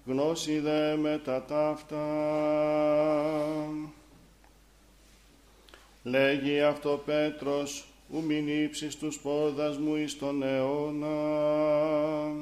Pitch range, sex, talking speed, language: 145-150 Hz, male, 80 wpm, Greek